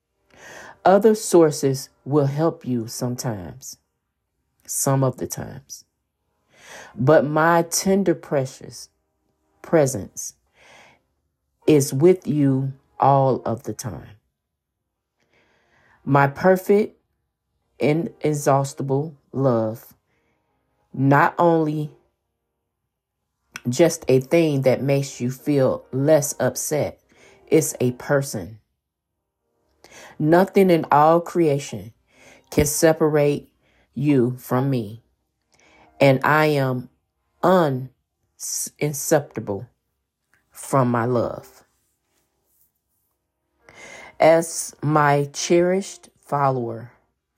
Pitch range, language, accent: 110-155 Hz, English, American